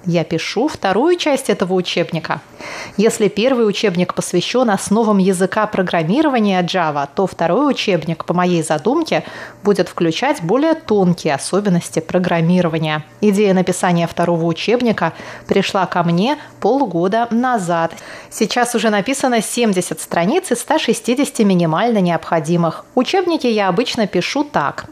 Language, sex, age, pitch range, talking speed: Russian, female, 30-49, 175-230 Hz, 120 wpm